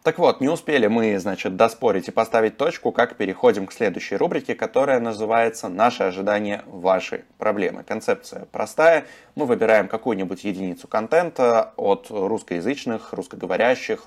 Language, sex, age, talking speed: Russian, male, 20-39, 130 wpm